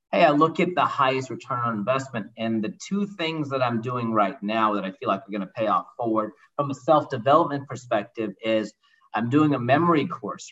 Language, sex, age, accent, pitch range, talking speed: English, male, 40-59, American, 110-145 Hz, 210 wpm